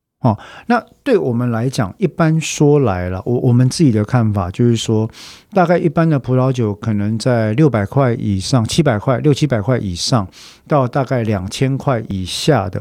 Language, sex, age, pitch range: Chinese, male, 50-69, 105-140 Hz